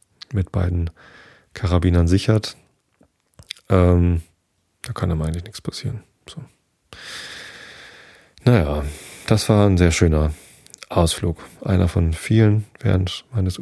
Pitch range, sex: 85-100 Hz, male